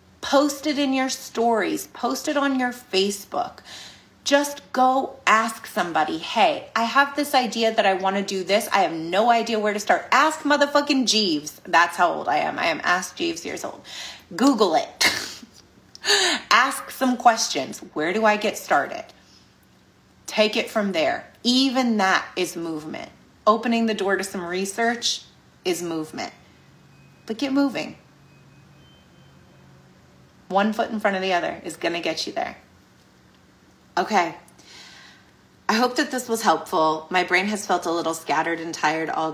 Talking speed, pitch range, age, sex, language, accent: 160 wpm, 170-250 Hz, 30-49, female, English, American